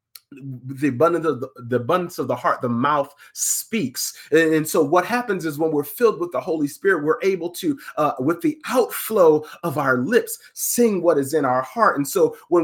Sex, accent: male, American